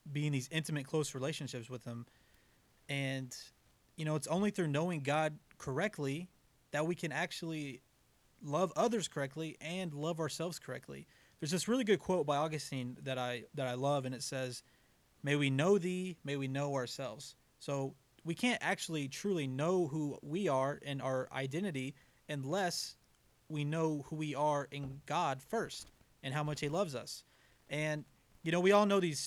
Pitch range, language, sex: 135-170 Hz, English, male